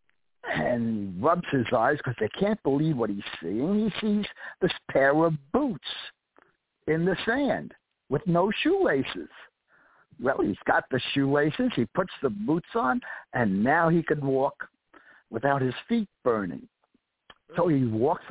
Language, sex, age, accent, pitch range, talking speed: English, male, 60-79, American, 115-160 Hz, 150 wpm